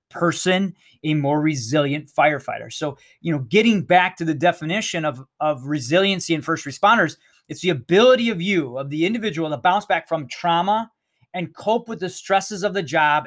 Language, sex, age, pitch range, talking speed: English, male, 20-39, 145-175 Hz, 180 wpm